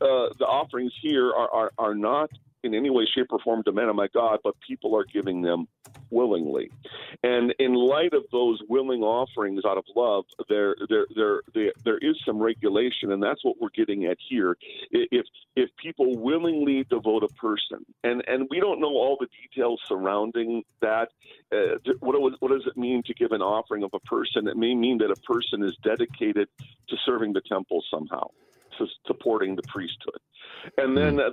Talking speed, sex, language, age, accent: 190 wpm, male, English, 50-69, American